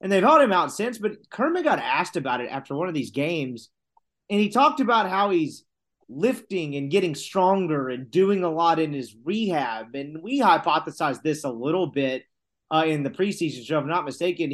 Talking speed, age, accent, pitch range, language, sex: 205 wpm, 30-49, American, 145-200 Hz, English, male